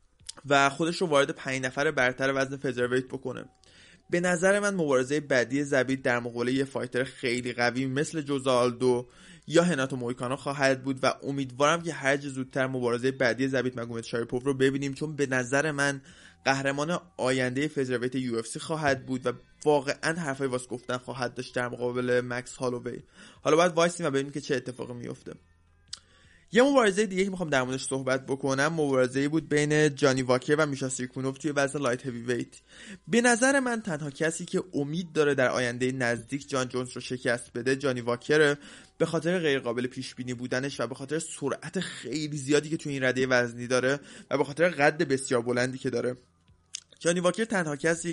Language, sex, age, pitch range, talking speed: Persian, male, 20-39, 125-150 Hz, 170 wpm